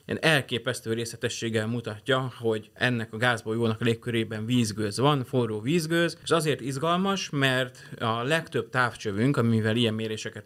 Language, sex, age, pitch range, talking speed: Hungarian, male, 30-49, 110-130 Hz, 140 wpm